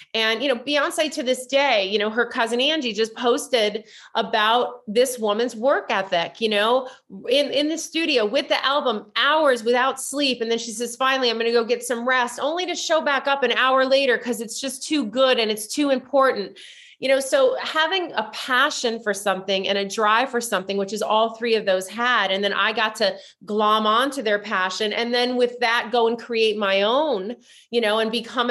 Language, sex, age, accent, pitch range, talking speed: English, female, 30-49, American, 210-250 Hz, 215 wpm